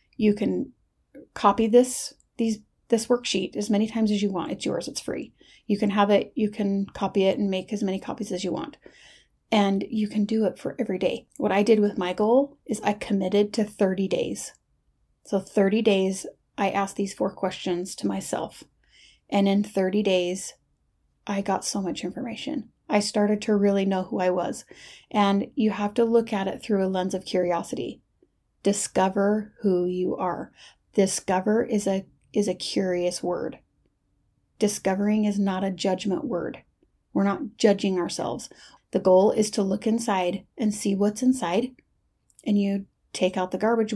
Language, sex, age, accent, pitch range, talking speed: English, female, 30-49, American, 195-220 Hz, 175 wpm